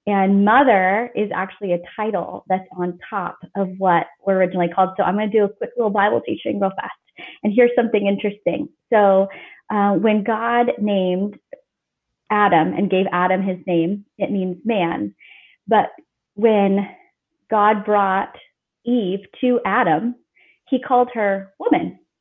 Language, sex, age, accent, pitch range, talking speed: English, female, 30-49, American, 195-230 Hz, 150 wpm